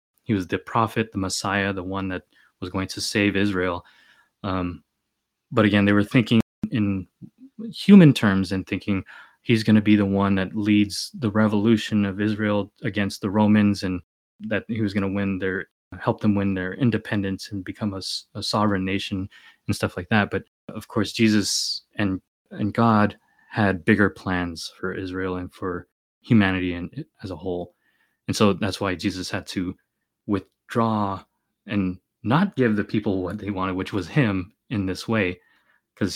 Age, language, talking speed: 20-39, English, 175 wpm